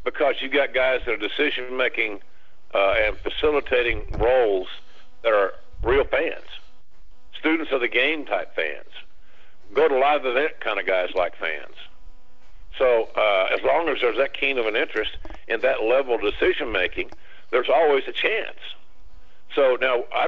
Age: 50-69